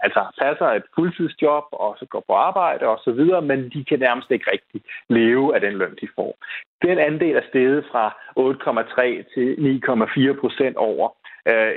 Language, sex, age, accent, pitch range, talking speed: Danish, male, 30-49, native, 110-140 Hz, 170 wpm